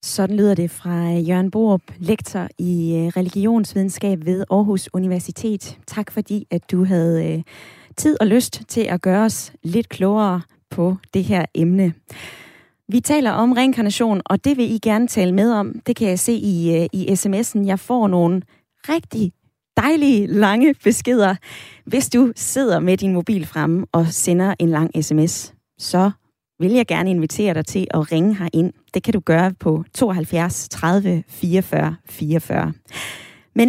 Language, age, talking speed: Danish, 20-39, 160 wpm